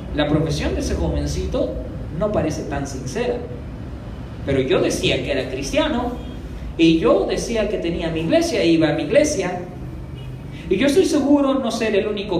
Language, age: Spanish, 40-59